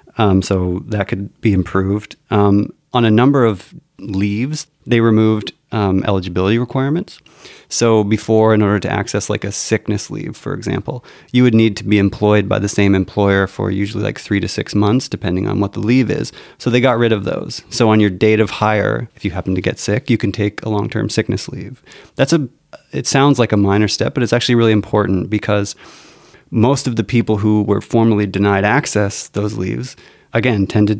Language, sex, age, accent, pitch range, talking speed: English, male, 30-49, American, 100-120 Hz, 200 wpm